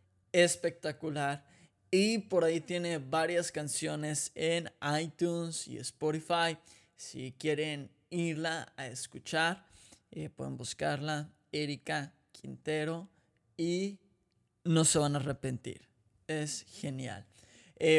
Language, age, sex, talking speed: Spanish, 20-39, male, 100 wpm